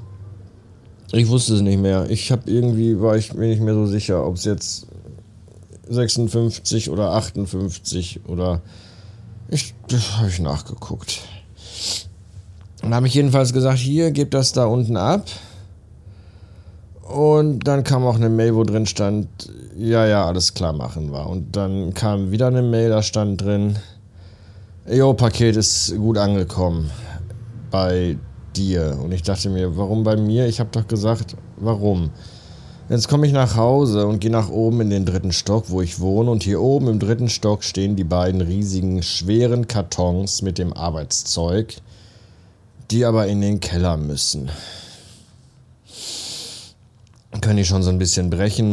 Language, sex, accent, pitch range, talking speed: German, male, German, 90-115 Hz, 150 wpm